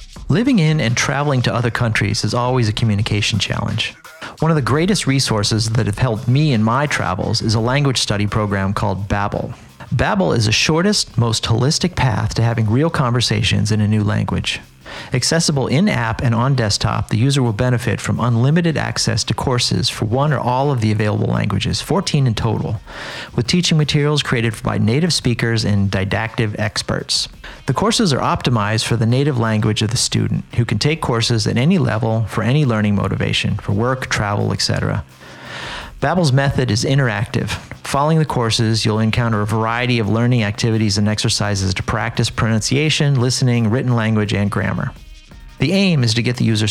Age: 40-59